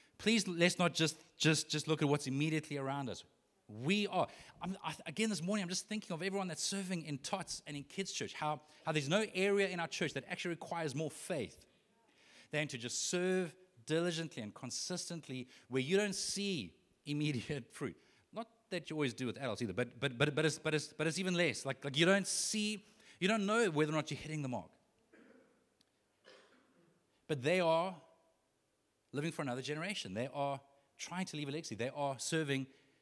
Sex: male